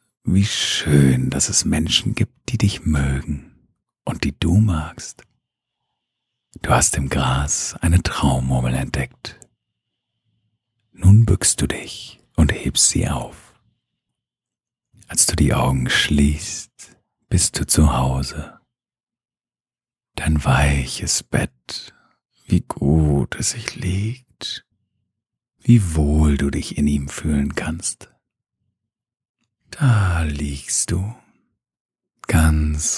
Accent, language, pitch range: German, German, 70-95 Hz